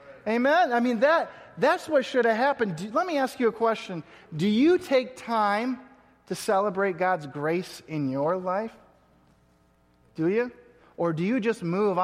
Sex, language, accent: male, English, American